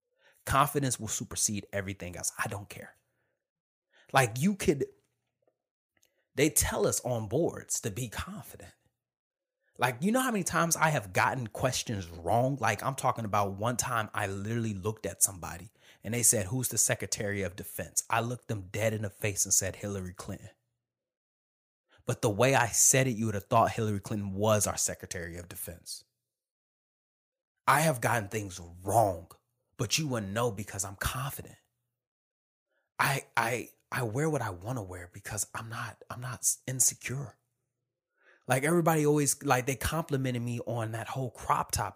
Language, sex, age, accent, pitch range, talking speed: English, male, 30-49, American, 105-135 Hz, 165 wpm